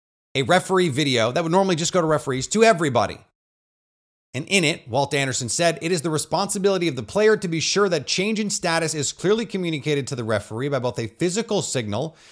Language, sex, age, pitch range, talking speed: English, male, 30-49, 125-180 Hz, 210 wpm